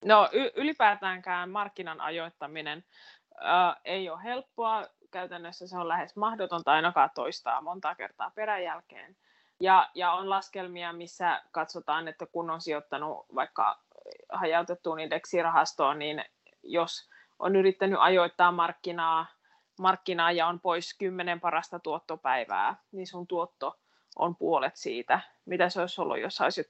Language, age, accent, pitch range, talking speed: Finnish, 20-39, native, 165-195 Hz, 125 wpm